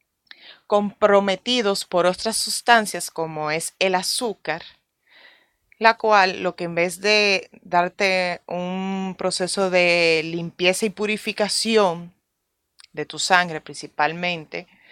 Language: Spanish